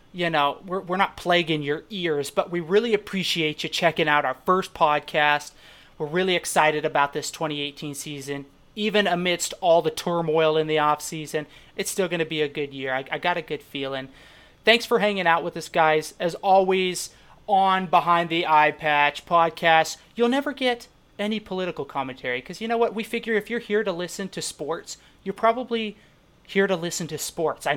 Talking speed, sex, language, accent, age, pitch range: 195 wpm, male, English, American, 30-49, 150-195 Hz